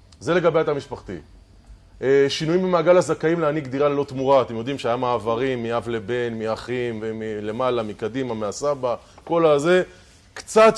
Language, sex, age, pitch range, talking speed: Hebrew, male, 20-39, 115-155 Hz, 135 wpm